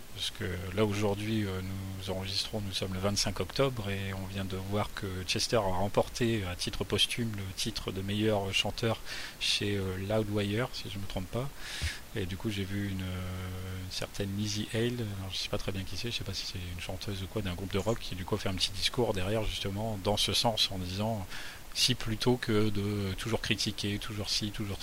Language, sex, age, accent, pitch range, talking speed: French, male, 30-49, French, 95-110 Hz, 220 wpm